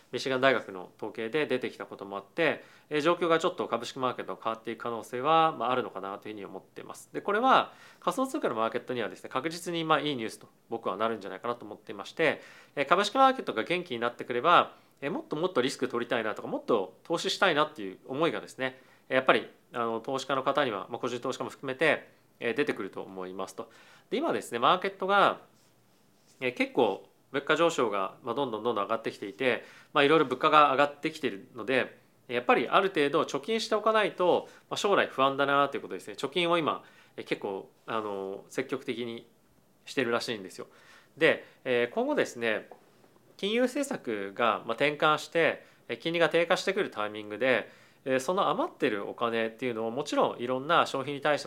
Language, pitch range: Japanese, 115-170 Hz